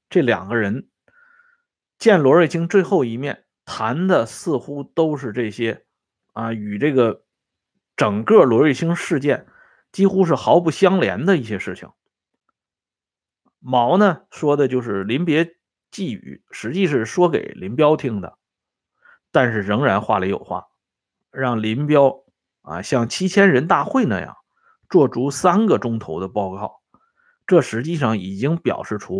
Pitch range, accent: 120-180 Hz, Chinese